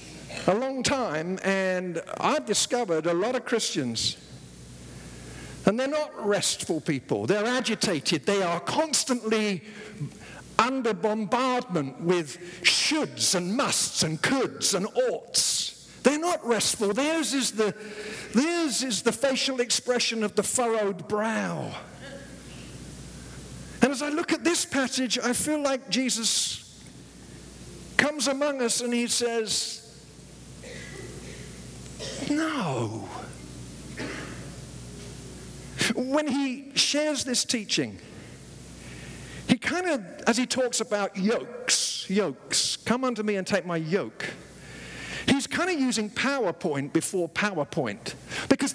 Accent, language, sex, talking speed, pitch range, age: British, English, male, 110 wpm, 175-255 Hz, 60-79